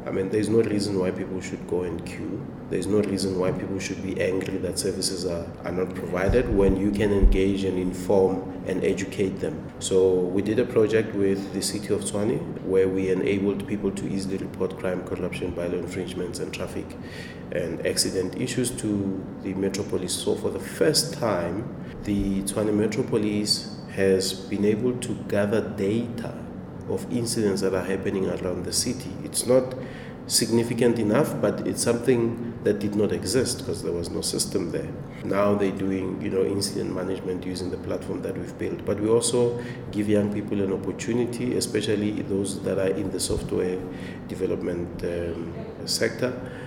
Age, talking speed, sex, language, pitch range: 30-49, 170 wpm, male, English, 95-105 Hz